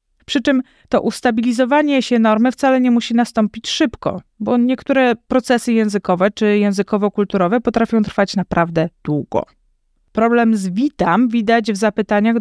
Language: Polish